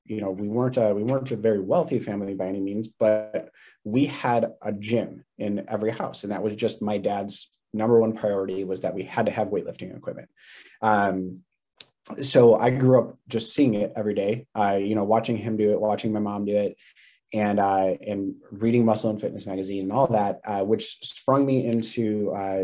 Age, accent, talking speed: 30-49, American, 205 wpm